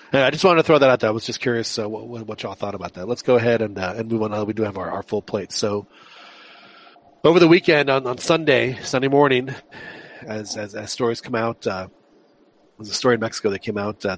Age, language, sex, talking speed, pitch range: 40-59, English, male, 260 wpm, 100-120 Hz